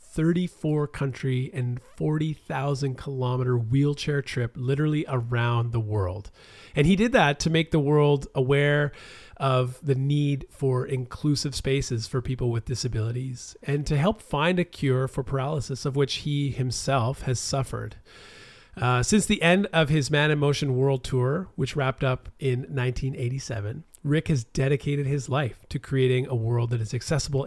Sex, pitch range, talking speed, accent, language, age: male, 120-145 Hz, 155 wpm, American, English, 40-59